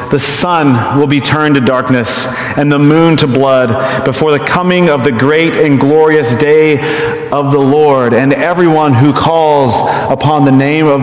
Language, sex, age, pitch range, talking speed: English, male, 30-49, 125-145 Hz, 175 wpm